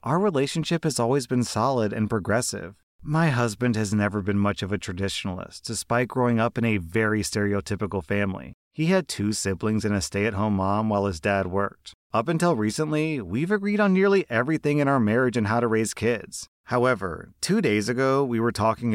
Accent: American